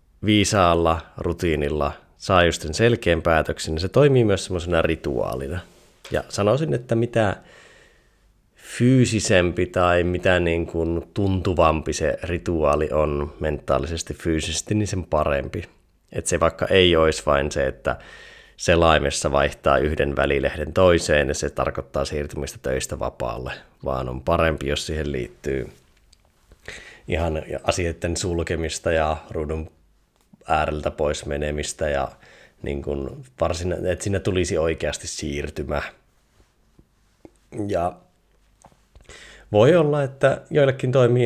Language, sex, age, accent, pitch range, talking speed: Finnish, male, 20-39, native, 80-95 Hz, 115 wpm